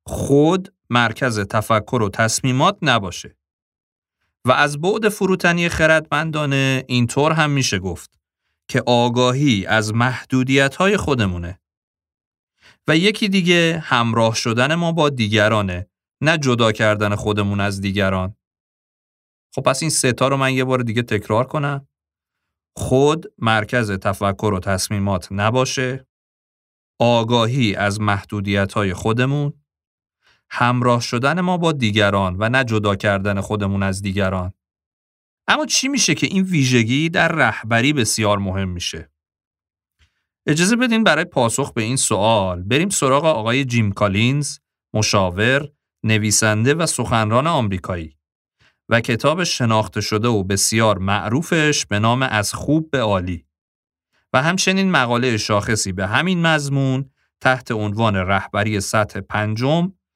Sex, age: male, 40-59